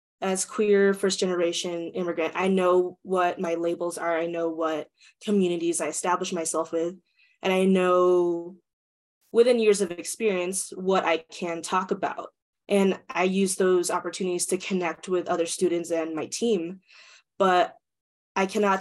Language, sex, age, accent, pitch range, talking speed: English, female, 20-39, American, 175-195 Hz, 145 wpm